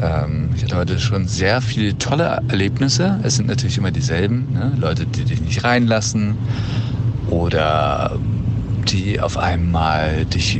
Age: 50-69